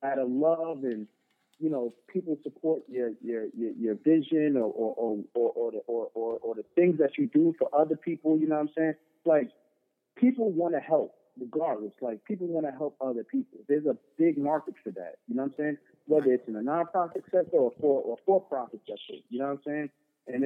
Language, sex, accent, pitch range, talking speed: English, male, American, 135-175 Hz, 225 wpm